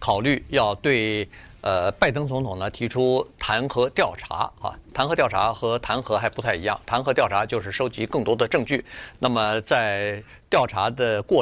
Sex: male